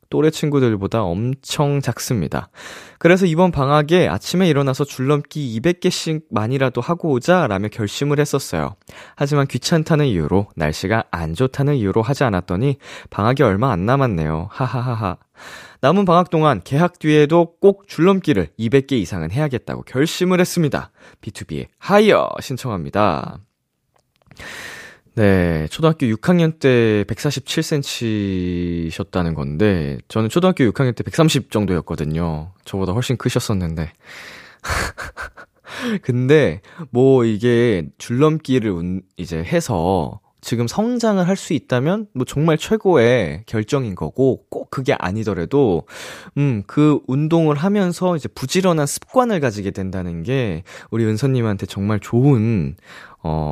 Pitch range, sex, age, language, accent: 95-155 Hz, male, 20-39, Korean, native